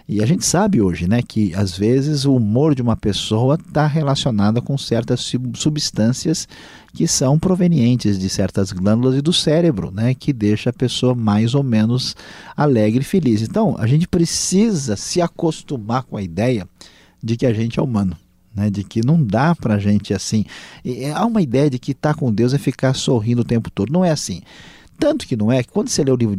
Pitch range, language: 105-140 Hz, Portuguese